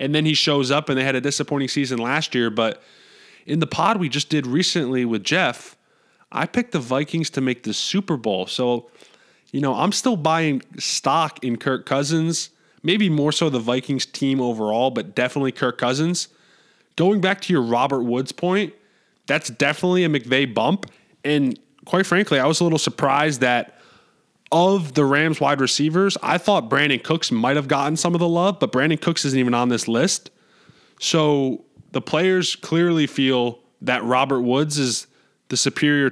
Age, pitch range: 20-39, 130-165 Hz